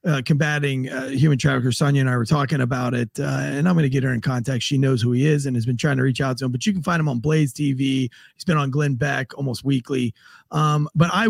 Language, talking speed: English, 280 wpm